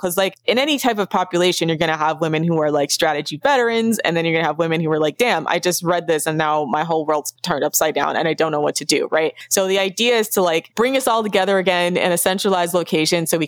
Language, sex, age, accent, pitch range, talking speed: English, female, 20-39, American, 160-190 Hz, 290 wpm